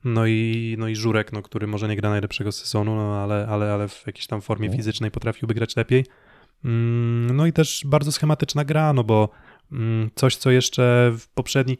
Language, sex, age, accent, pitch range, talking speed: Polish, male, 20-39, native, 110-130 Hz, 175 wpm